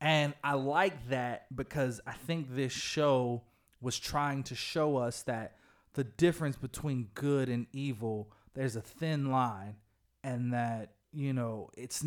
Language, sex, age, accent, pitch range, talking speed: English, male, 20-39, American, 115-140 Hz, 150 wpm